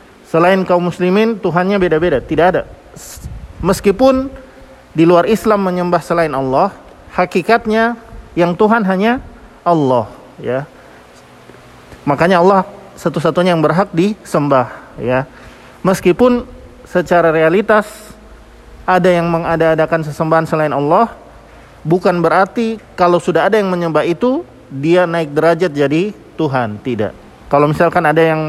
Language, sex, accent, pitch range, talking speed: Indonesian, male, native, 160-210 Hz, 115 wpm